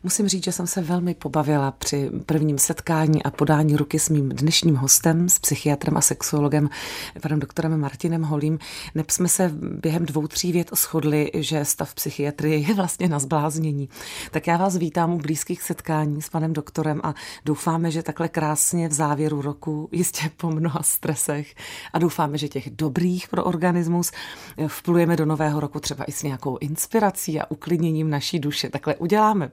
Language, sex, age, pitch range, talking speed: Czech, female, 30-49, 150-175 Hz, 170 wpm